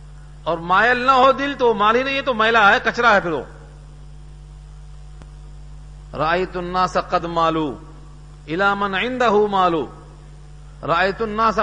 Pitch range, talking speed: 150-220 Hz, 155 wpm